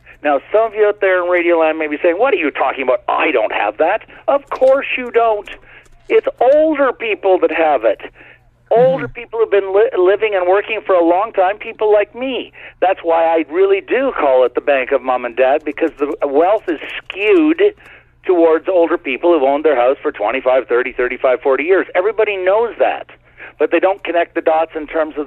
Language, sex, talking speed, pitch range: English, male, 210 wpm, 150-210 Hz